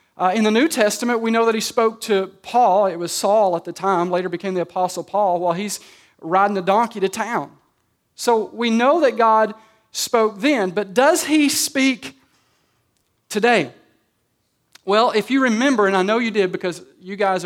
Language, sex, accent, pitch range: English, male, American, 165-225 Hz